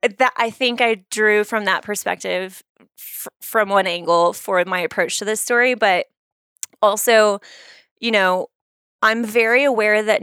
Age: 20-39